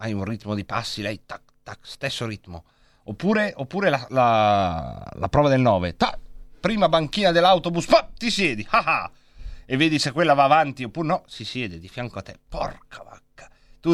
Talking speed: 180 wpm